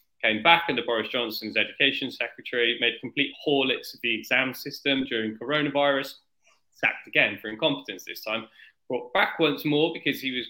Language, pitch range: English, 110-130 Hz